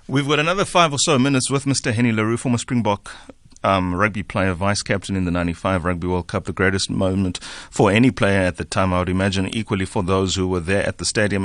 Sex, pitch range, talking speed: male, 90-115 Hz, 230 wpm